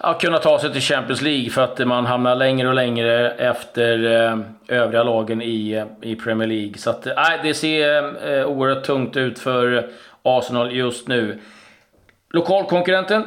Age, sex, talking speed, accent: 40-59, male, 150 wpm, native